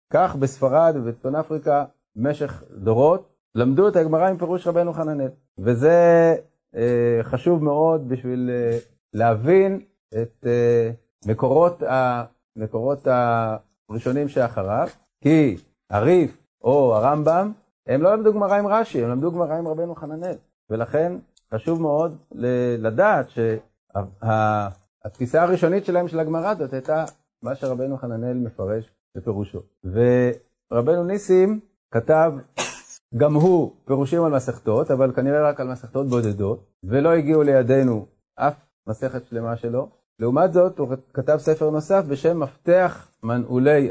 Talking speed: 120 wpm